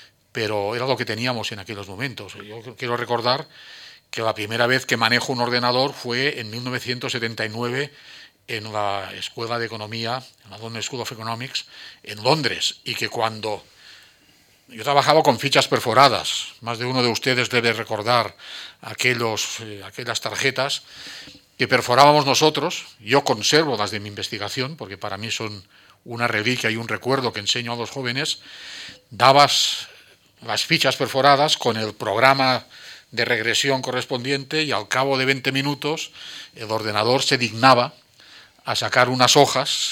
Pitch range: 110-135 Hz